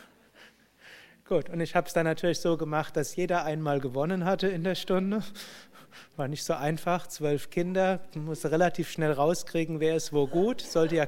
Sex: male